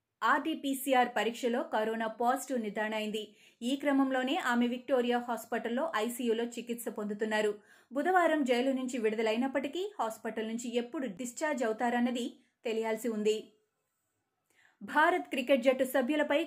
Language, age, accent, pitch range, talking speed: Telugu, 20-39, native, 230-275 Hz, 105 wpm